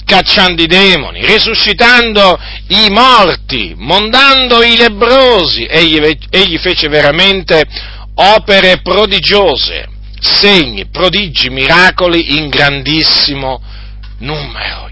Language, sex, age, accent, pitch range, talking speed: Italian, male, 50-69, native, 125-180 Hz, 85 wpm